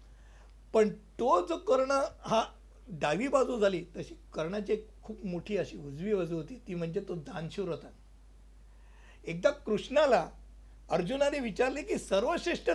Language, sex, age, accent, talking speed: Hindi, male, 60-79, native, 75 wpm